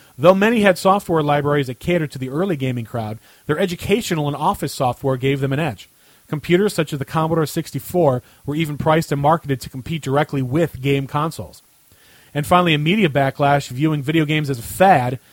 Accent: American